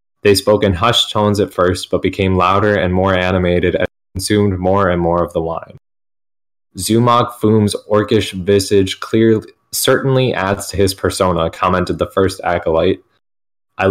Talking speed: 155 wpm